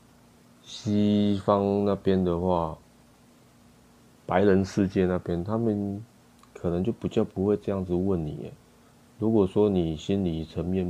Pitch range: 85-100 Hz